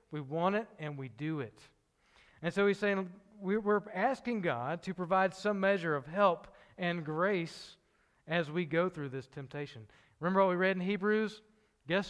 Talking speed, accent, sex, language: 175 wpm, American, male, English